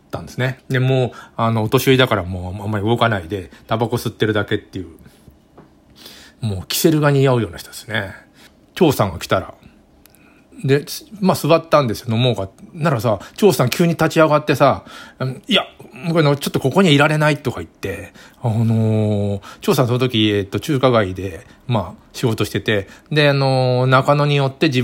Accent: native